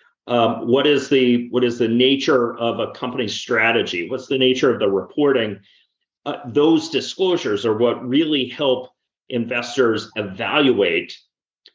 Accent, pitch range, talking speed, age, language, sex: American, 105-145 Hz, 140 wpm, 40-59, English, male